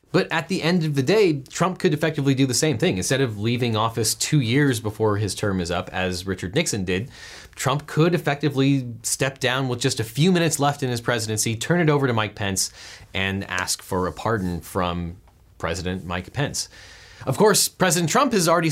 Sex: male